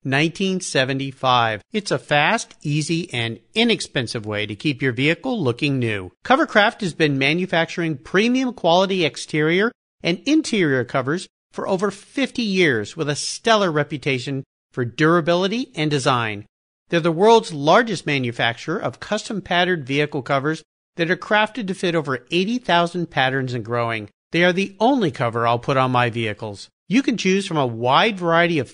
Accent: American